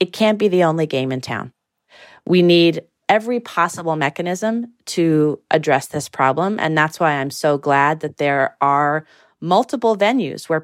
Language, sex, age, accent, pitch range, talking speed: English, female, 30-49, American, 145-180 Hz, 165 wpm